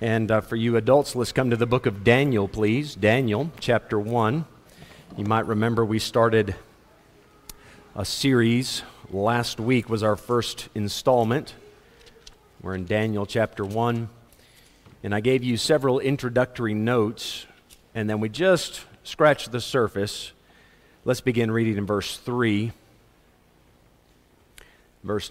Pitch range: 110-130 Hz